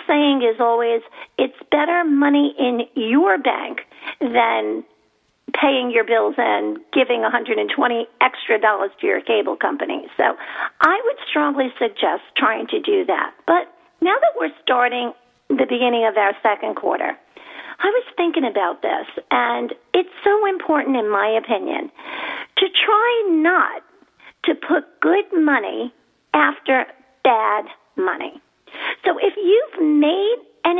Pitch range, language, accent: 245-375 Hz, English, American